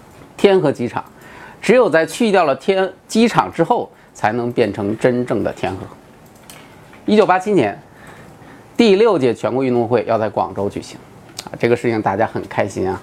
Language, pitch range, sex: Chinese, 110-180 Hz, male